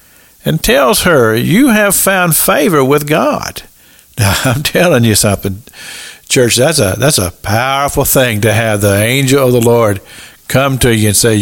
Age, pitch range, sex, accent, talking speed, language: 50-69, 125-205 Hz, male, American, 175 wpm, English